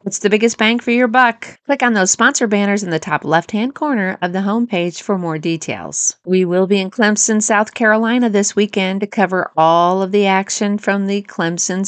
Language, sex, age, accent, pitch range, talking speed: English, female, 40-59, American, 160-210 Hz, 205 wpm